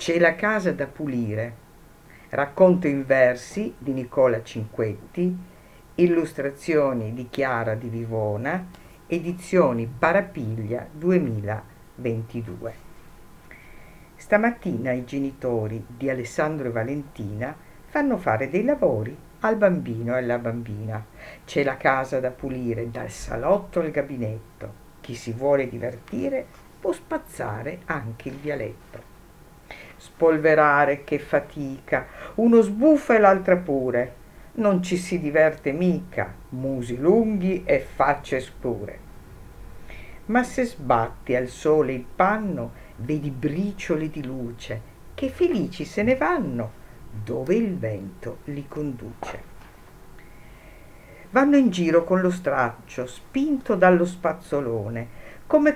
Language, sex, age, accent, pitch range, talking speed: Italian, female, 50-69, native, 120-180 Hz, 110 wpm